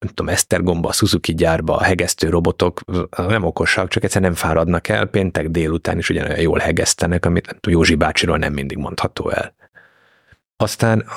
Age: 30-49